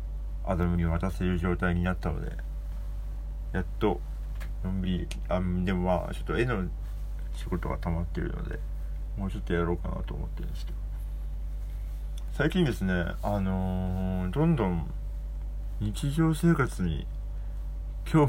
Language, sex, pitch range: Japanese, male, 85-100 Hz